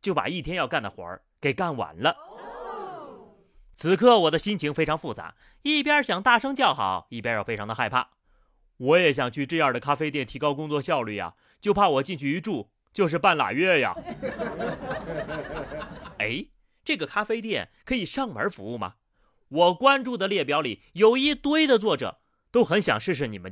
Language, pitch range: Chinese, 145-230 Hz